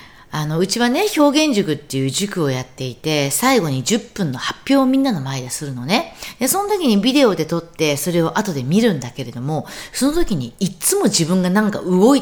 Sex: female